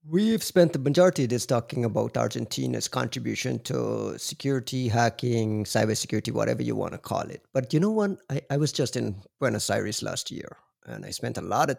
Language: English